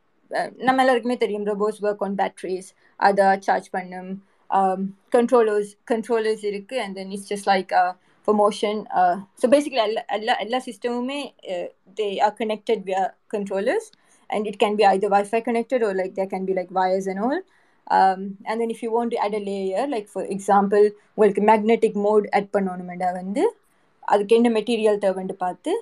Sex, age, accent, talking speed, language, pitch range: female, 20-39, native, 170 wpm, Tamil, 195-240 Hz